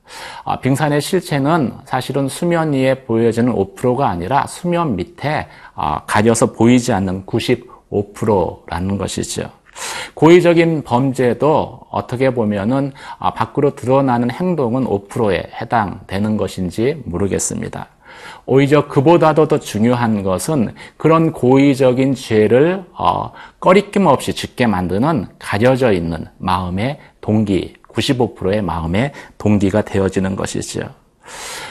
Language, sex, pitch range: Korean, male, 105-145 Hz